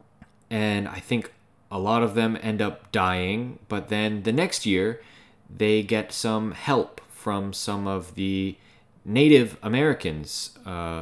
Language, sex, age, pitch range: Japanese, male, 20-39, 95-120 Hz